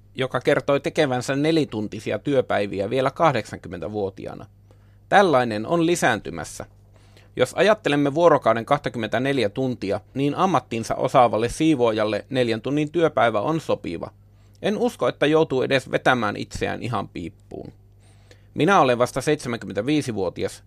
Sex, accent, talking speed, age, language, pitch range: male, native, 105 wpm, 30-49, Finnish, 100-140 Hz